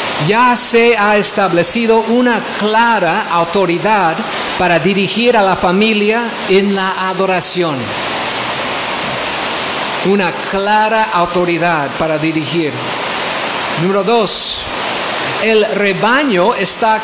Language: English